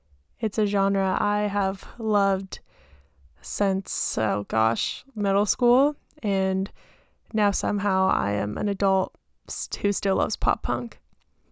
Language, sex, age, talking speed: English, female, 10-29, 120 wpm